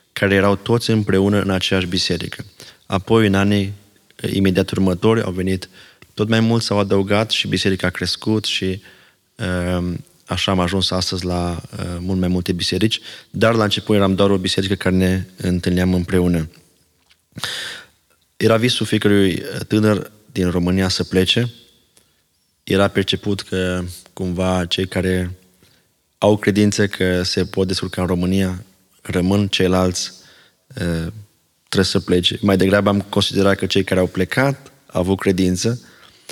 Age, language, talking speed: 20-39, Romanian, 135 wpm